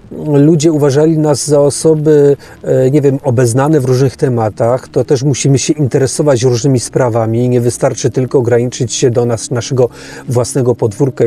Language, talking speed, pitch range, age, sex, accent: Polish, 145 wpm, 135-180 Hz, 40-59, male, native